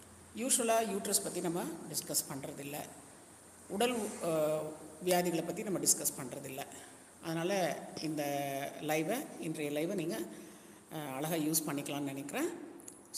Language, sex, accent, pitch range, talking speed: Tamil, female, native, 155-220 Hz, 100 wpm